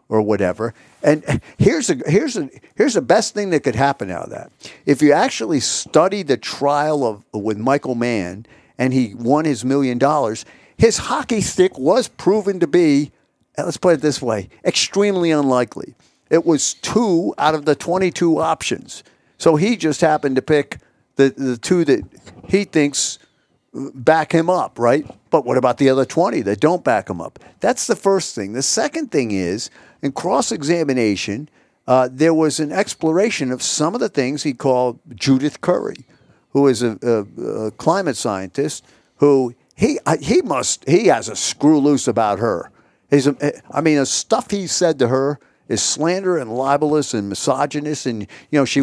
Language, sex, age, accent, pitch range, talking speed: English, male, 50-69, American, 125-160 Hz, 175 wpm